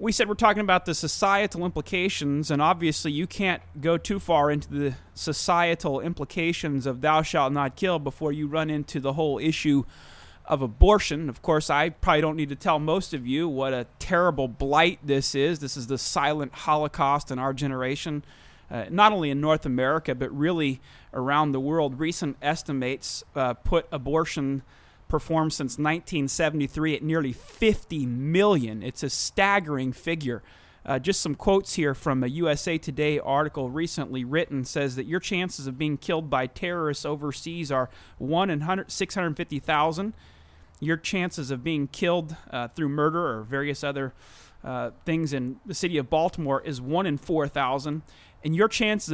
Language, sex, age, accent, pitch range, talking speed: English, male, 30-49, American, 135-170 Hz, 165 wpm